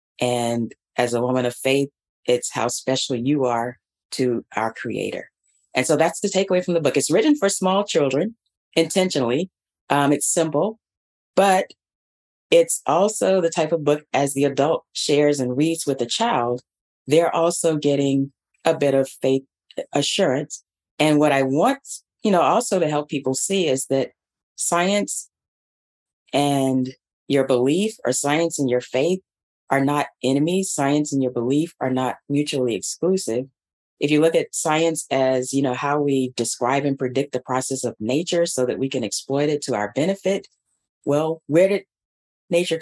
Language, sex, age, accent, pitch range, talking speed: English, female, 30-49, American, 125-160 Hz, 165 wpm